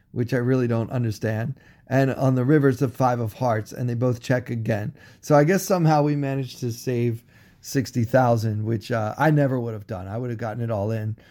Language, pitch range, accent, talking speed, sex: English, 110-145 Hz, American, 220 wpm, male